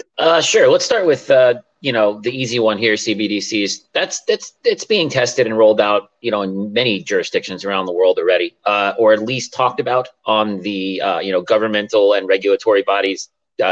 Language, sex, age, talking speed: English, male, 30-49, 200 wpm